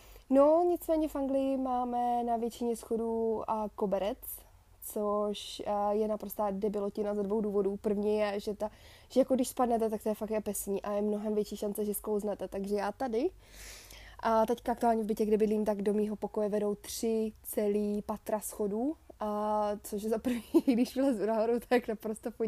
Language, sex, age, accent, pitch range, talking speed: Czech, female, 20-39, native, 210-230 Hz, 185 wpm